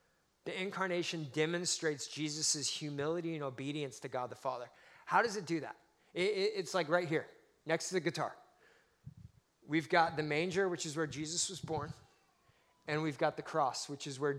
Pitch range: 135-160 Hz